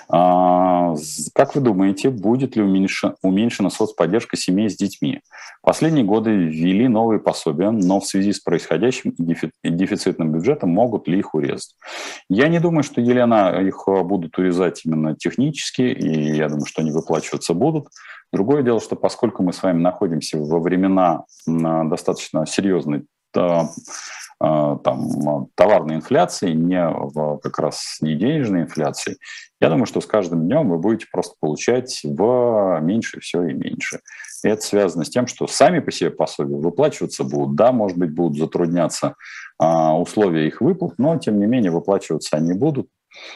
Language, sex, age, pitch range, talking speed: Russian, male, 40-59, 80-100 Hz, 145 wpm